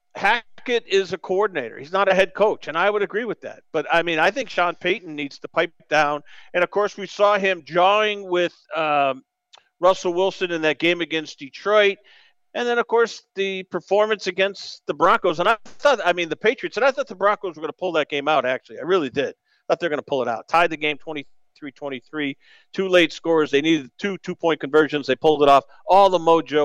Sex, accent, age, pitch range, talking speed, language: male, American, 50-69, 150-200 Hz, 235 wpm, English